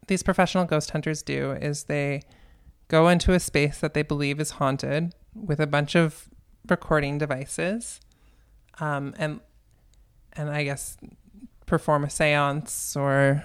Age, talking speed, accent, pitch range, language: 20-39, 140 wpm, American, 135-160 Hz, English